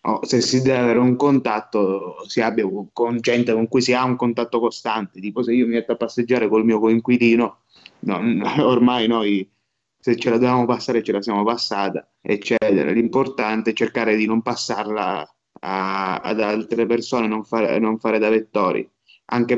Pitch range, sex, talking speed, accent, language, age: 110-125 Hz, male, 180 wpm, native, Italian, 20-39